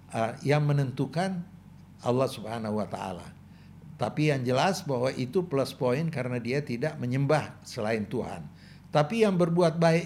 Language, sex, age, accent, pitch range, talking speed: Indonesian, male, 60-79, native, 125-175 Hz, 145 wpm